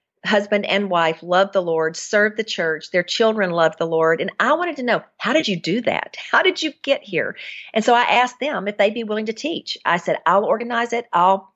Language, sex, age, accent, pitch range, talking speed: English, female, 50-69, American, 175-225 Hz, 240 wpm